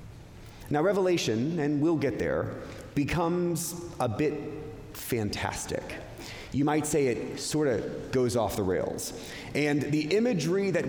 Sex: male